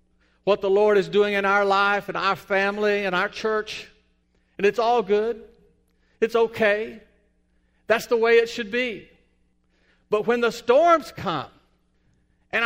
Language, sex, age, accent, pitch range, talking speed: English, male, 50-69, American, 165-250 Hz, 150 wpm